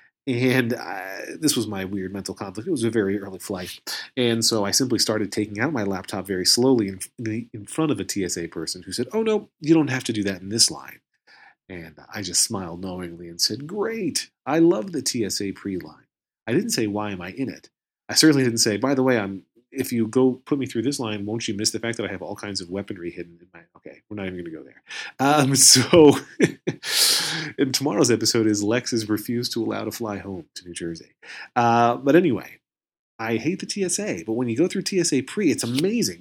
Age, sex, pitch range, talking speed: 30-49, male, 100-145 Hz, 230 wpm